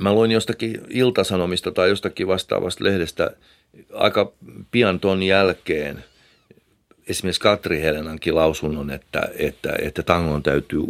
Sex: male